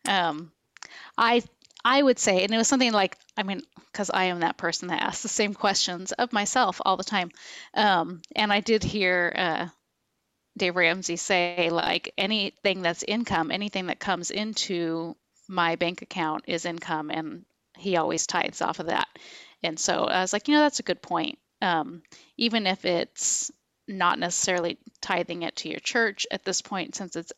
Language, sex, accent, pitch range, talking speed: English, female, American, 175-220 Hz, 180 wpm